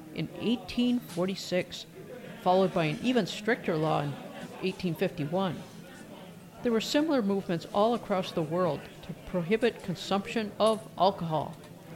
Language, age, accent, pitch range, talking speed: English, 50-69, American, 165-215 Hz, 115 wpm